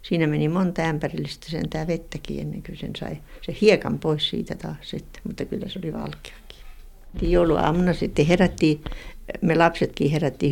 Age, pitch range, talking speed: 60-79, 155-185 Hz, 160 wpm